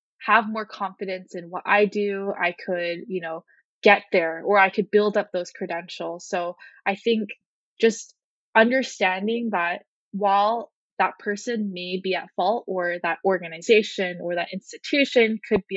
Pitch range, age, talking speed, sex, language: 180-210 Hz, 20-39, 155 wpm, female, English